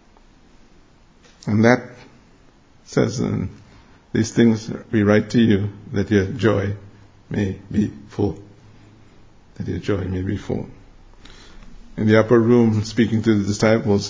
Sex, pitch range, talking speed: male, 100-115 Hz, 130 wpm